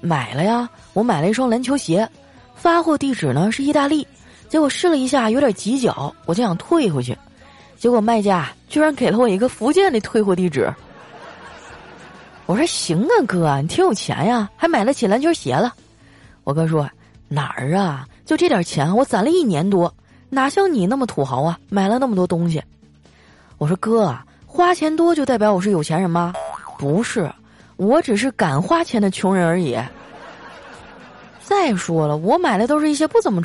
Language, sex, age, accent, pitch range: Chinese, female, 20-39, native, 165-265 Hz